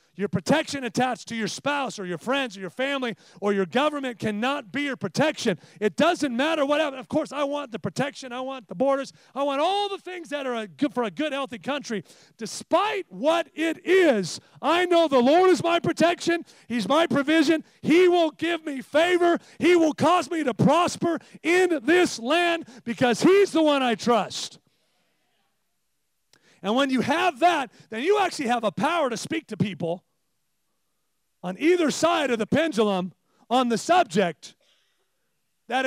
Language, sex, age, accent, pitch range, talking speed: English, male, 40-59, American, 210-310 Hz, 180 wpm